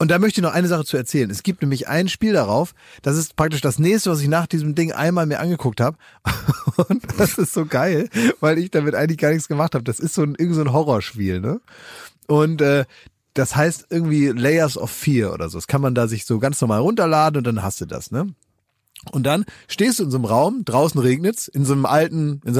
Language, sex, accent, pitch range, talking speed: German, male, German, 130-175 Hz, 240 wpm